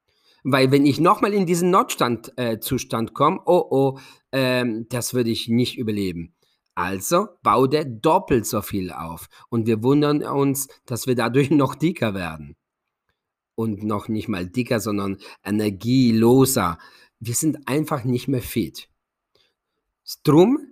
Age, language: 40-59, German